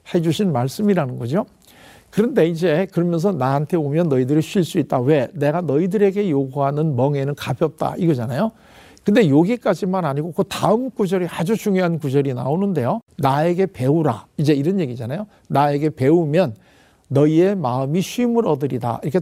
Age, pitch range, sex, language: 50-69, 145-205 Hz, male, Korean